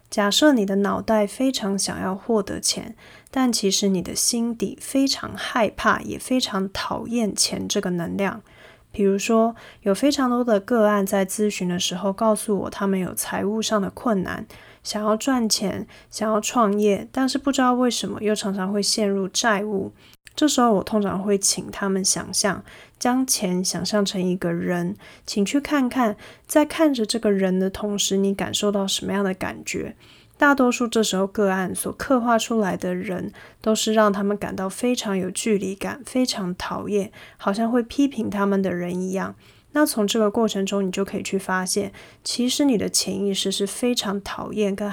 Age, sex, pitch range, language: 20-39, female, 195-230 Hz, Chinese